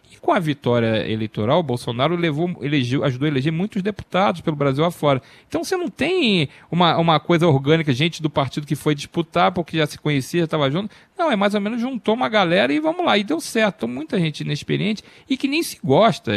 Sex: male